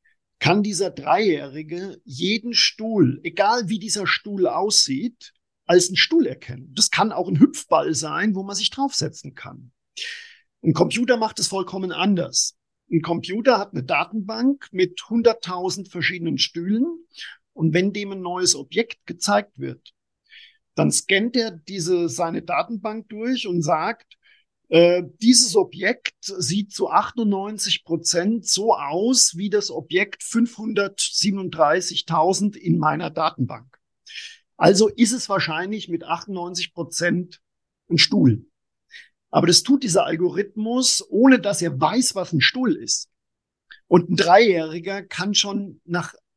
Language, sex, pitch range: German, male, 175-230 Hz